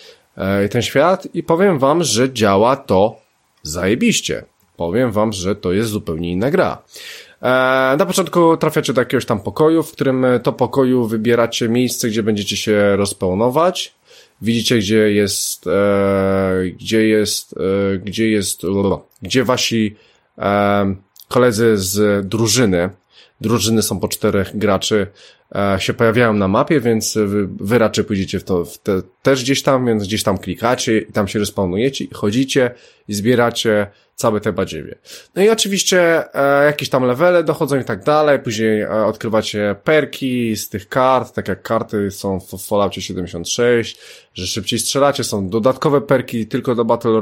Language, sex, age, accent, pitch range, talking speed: Polish, male, 20-39, native, 100-130 Hz, 155 wpm